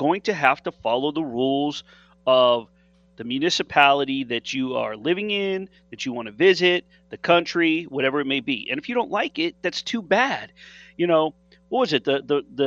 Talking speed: 210 wpm